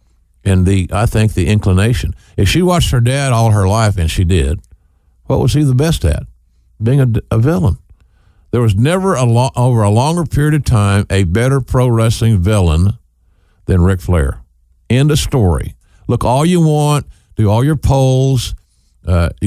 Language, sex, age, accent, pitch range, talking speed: English, male, 50-69, American, 90-125 Hz, 180 wpm